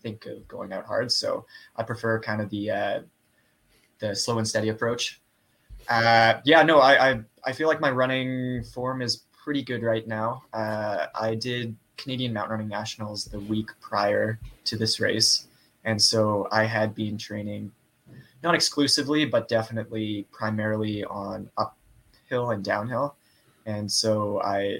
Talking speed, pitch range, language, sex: 155 wpm, 105-120 Hz, English, male